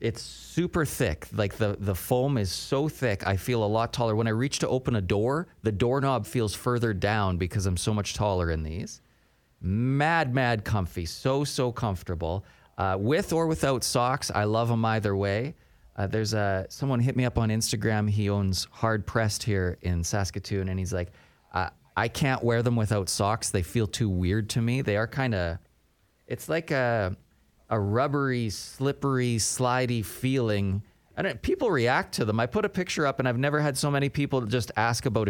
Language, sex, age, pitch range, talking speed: English, male, 30-49, 100-130 Hz, 195 wpm